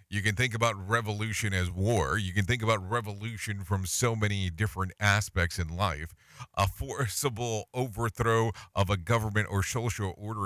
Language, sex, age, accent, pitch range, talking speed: English, male, 40-59, American, 95-120 Hz, 160 wpm